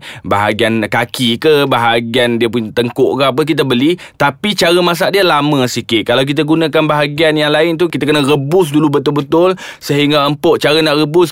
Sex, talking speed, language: male, 180 wpm, Malay